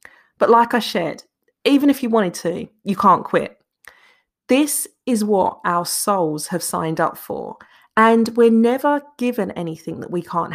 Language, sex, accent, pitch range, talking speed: English, female, British, 170-235 Hz, 165 wpm